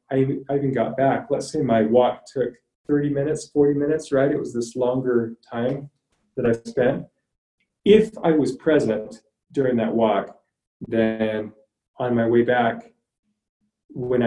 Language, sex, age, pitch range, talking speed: English, male, 30-49, 115-145 Hz, 145 wpm